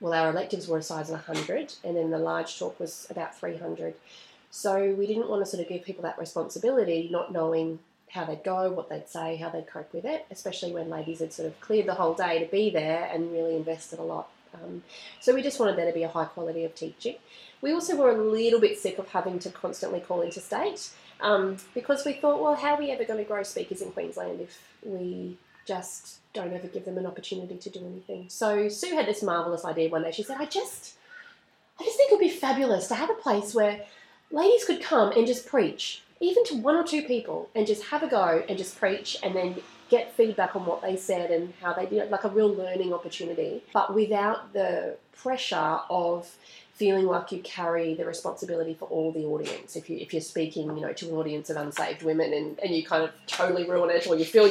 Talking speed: 240 wpm